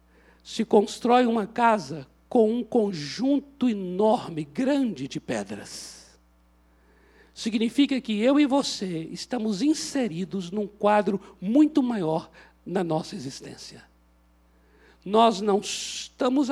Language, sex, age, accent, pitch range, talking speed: Portuguese, male, 60-79, Brazilian, 185-260 Hz, 100 wpm